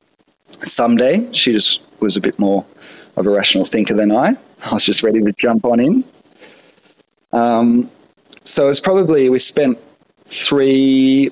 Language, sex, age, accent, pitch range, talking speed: English, male, 20-39, Australian, 100-125 Hz, 155 wpm